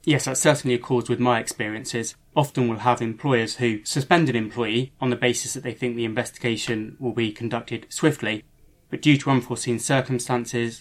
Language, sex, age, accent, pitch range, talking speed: English, male, 20-39, British, 115-135 Hz, 185 wpm